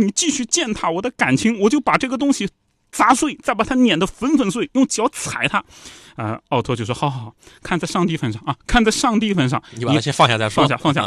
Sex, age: male, 30-49